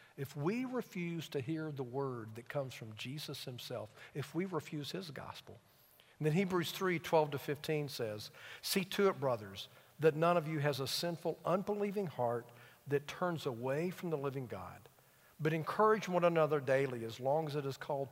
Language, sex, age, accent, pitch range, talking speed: English, male, 50-69, American, 130-165 Hz, 180 wpm